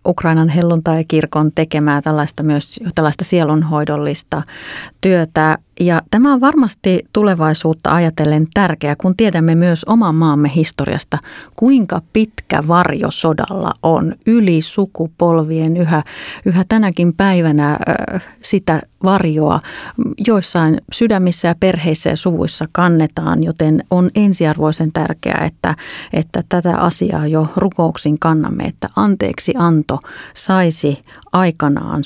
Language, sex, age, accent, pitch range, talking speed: Finnish, female, 30-49, native, 155-180 Hz, 105 wpm